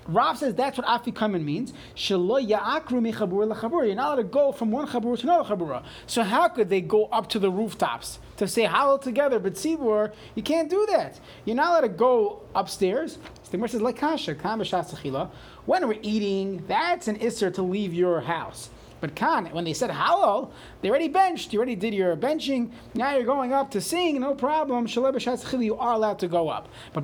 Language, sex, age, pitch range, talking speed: English, male, 30-49, 175-235 Hz, 180 wpm